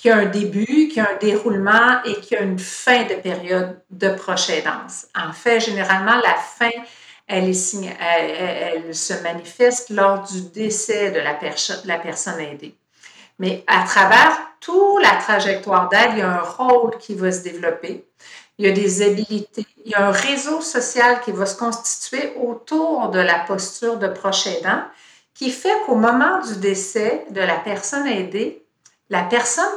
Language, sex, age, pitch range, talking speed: French, female, 50-69, 195-245 Hz, 175 wpm